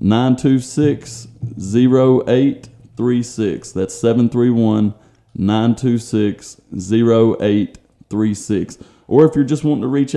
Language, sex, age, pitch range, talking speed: English, male, 30-49, 105-120 Hz, 110 wpm